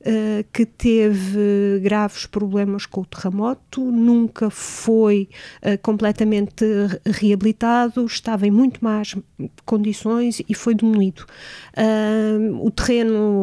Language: Portuguese